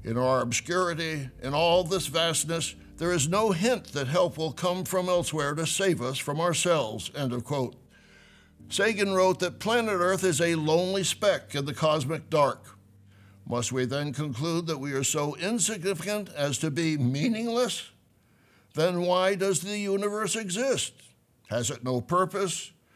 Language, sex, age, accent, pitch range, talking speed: English, male, 60-79, American, 145-185 Hz, 160 wpm